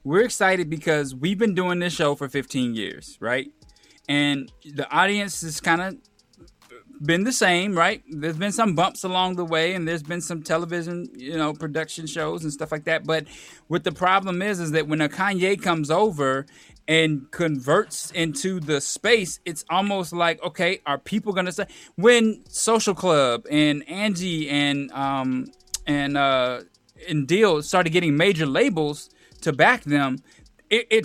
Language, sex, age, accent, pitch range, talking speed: English, male, 20-39, American, 150-195 Hz, 170 wpm